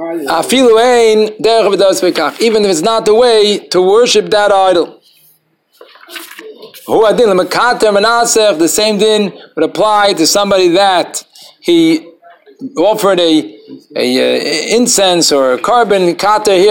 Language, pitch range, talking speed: English, 175-230 Hz, 105 wpm